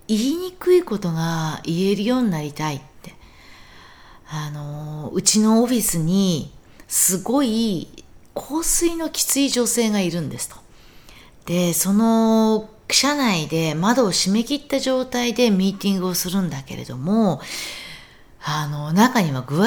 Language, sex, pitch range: Japanese, female, 160-235 Hz